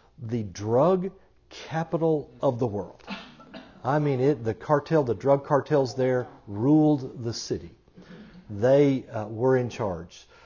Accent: American